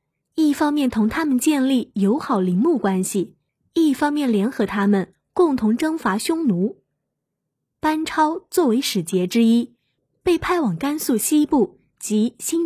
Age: 20-39